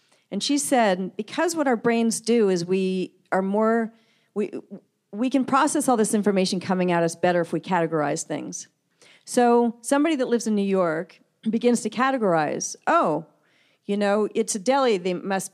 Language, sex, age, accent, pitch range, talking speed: English, female, 40-59, American, 180-230 Hz, 175 wpm